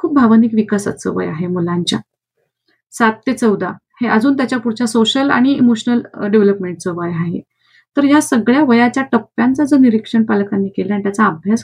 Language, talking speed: Marathi, 80 wpm